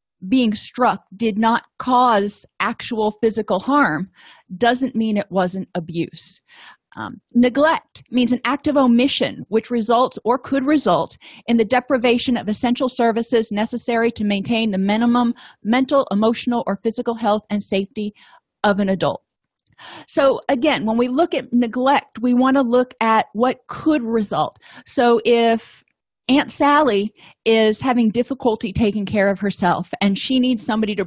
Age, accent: 30-49, American